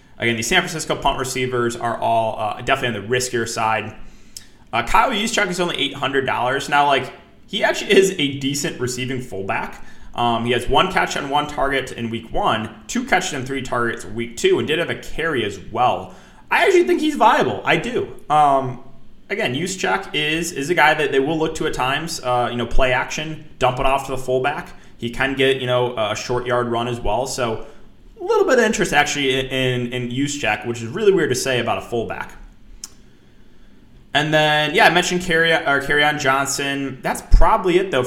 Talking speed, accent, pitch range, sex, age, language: 210 wpm, American, 120-160 Hz, male, 20-39, English